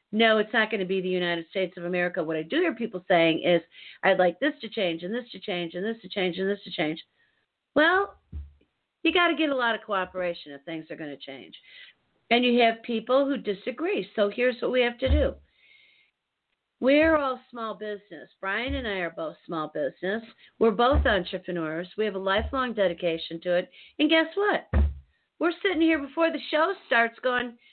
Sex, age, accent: female, 50-69, American